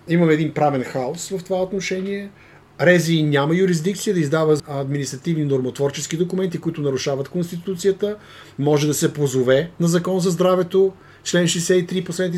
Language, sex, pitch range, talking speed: Bulgarian, male, 135-170 Hz, 140 wpm